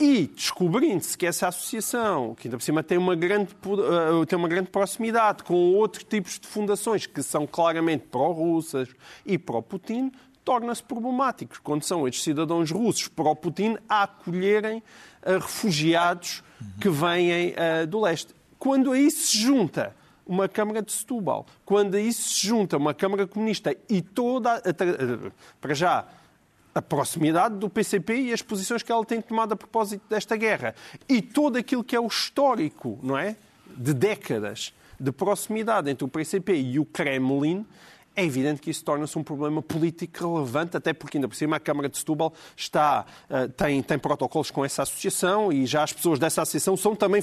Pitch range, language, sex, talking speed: 155-215 Hz, Portuguese, male, 160 wpm